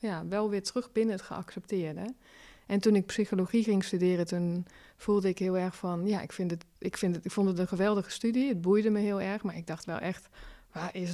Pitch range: 180-210 Hz